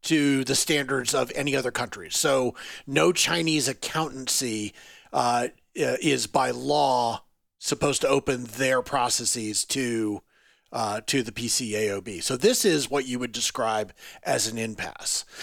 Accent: American